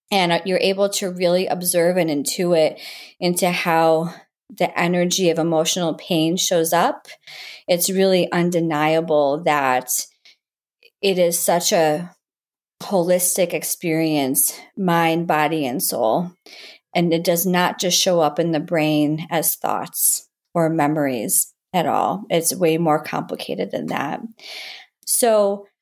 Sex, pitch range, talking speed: female, 170-205 Hz, 125 wpm